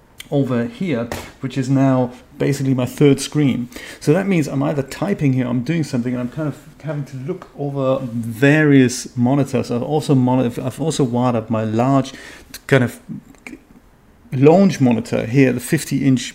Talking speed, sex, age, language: 160 wpm, male, 40-59, English